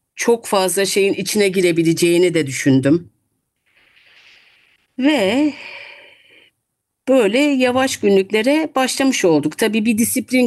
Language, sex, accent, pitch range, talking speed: Turkish, female, native, 165-260 Hz, 90 wpm